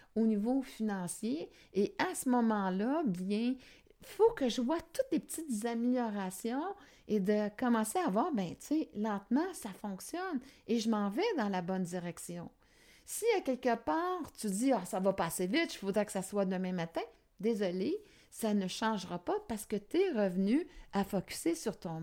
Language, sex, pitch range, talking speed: French, female, 195-285 Hz, 185 wpm